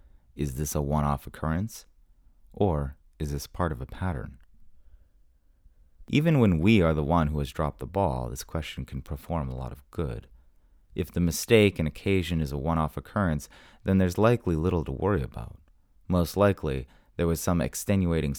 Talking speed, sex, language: 175 wpm, male, English